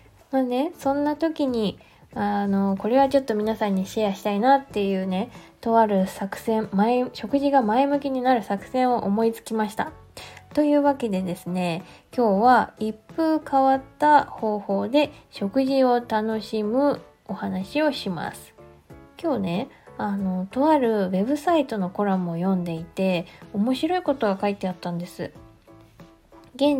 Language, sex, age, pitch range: Japanese, female, 20-39, 195-270 Hz